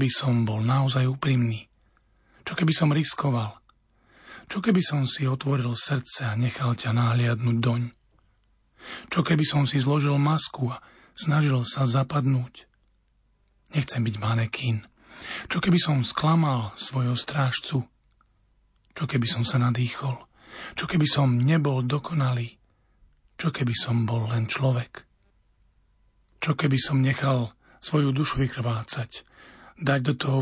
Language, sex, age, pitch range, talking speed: Slovak, male, 40-59, 120-150 Hz, 130 wpm